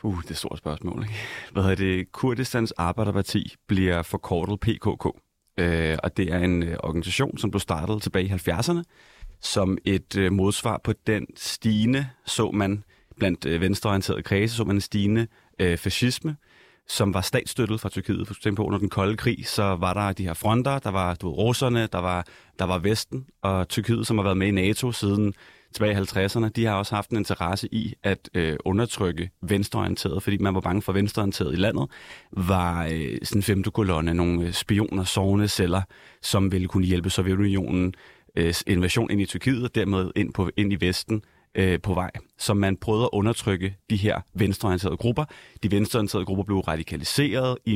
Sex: male